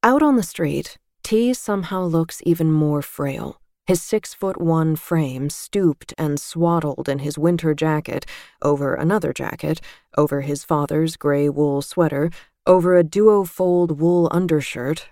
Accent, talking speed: American, 145 wpm